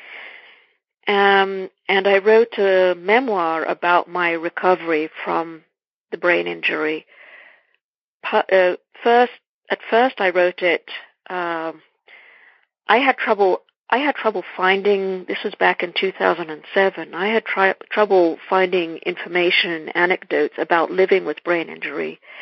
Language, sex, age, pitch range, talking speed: English, female, 50-69, 175-210 Hz, 125 wpm